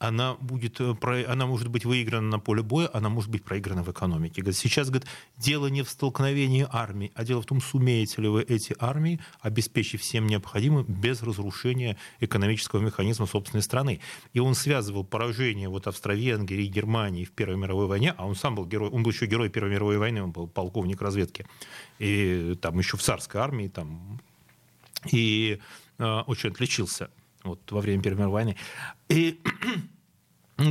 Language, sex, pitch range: Russian, male, 105-130 Hz